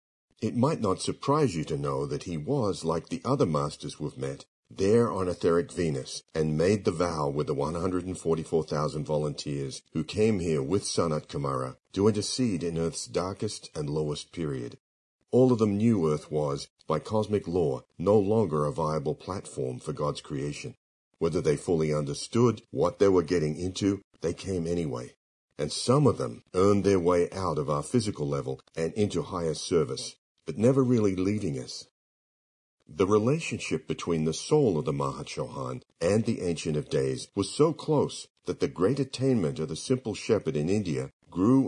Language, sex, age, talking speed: English, male, 50-69, 175 wpm